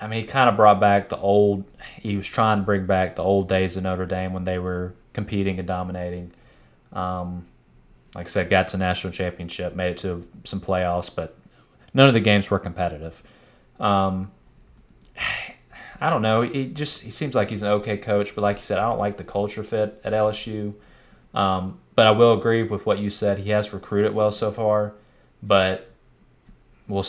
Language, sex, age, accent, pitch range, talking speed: English, male, 20-39, American, 95-105 Hz, 195 wpm